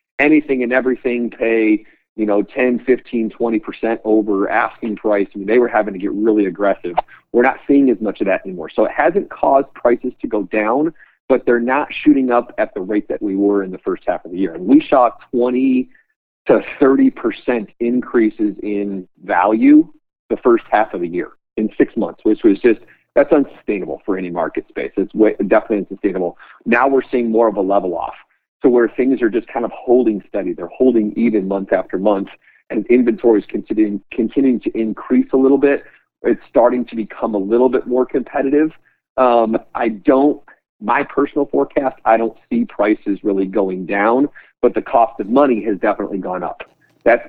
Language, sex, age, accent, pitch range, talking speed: English, male, 40-59, American, 105-130 Hz, 190 wpm